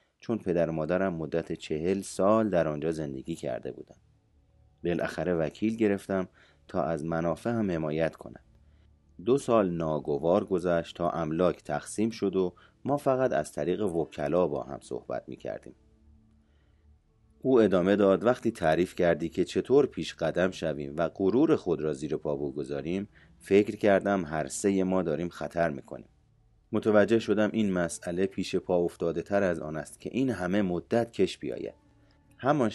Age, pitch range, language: 30-49, 80-105 Hz, Persian